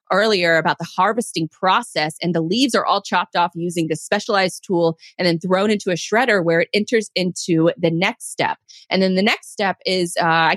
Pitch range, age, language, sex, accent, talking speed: 170-210 Hz, 30-49, English, female, American, 210 wpm